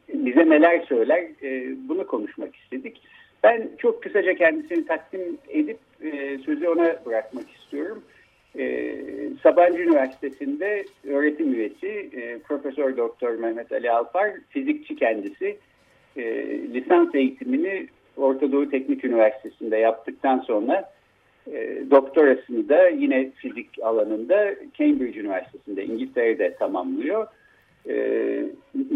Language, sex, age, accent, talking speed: Turkish, male, 60-79, native, 105 wpm